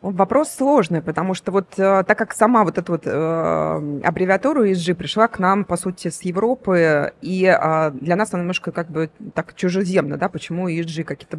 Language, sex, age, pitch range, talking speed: Russian, female, 20-39, 165-200 Hz, 170 wpm